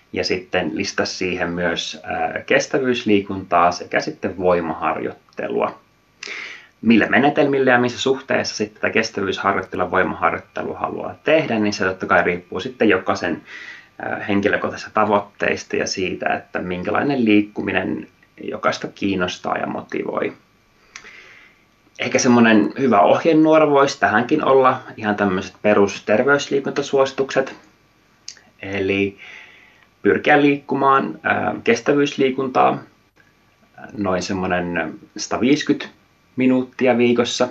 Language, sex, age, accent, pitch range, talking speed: Finnish, male, 20-39, native, 95-135 Hz, 95 wpm